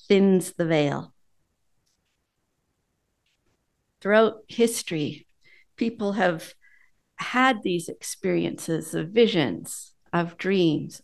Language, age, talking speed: English, 50-69, 75 wpm